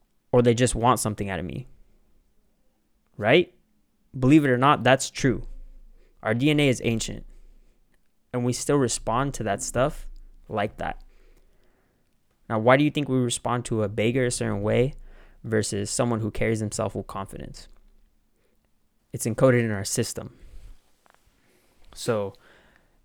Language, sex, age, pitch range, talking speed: English, male, 20-39, 105-125 Hz, 140 wpm